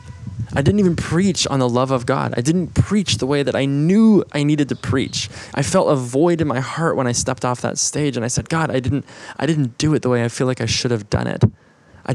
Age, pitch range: 20-39, 110-135 Hz